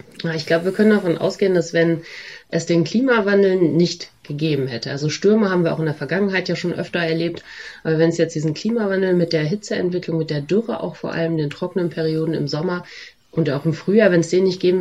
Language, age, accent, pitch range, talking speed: German, 30-49, German, 155-185 Hz, 225 wpm